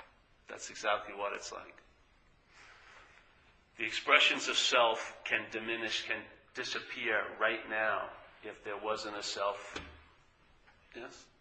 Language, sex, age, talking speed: English, male, 40-59, 110 wpm